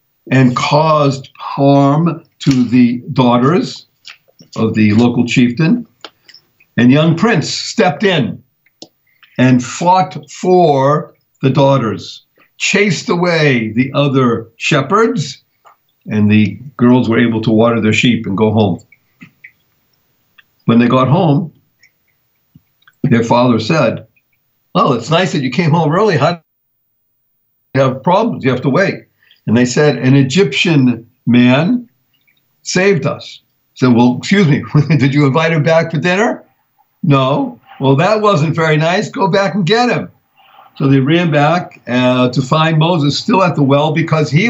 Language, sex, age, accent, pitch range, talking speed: English, male, 60-79, American, 125-170 Hz, 140 wpm